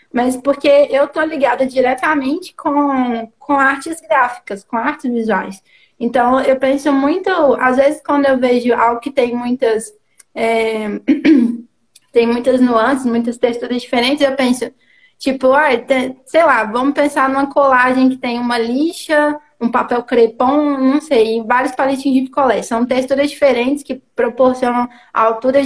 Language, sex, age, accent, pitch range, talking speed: Portuguese, female, 20-39, Brazilian, 245-290 Hz, 145 wpm